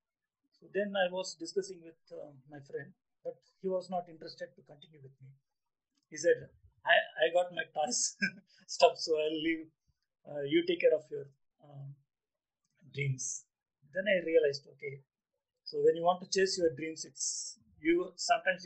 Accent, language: Indian, English